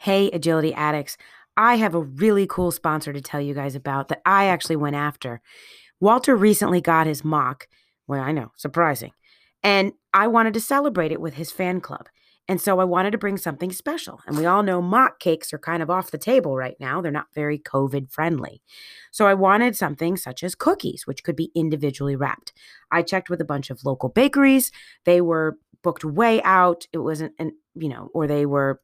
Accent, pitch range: American, 155-210 Hz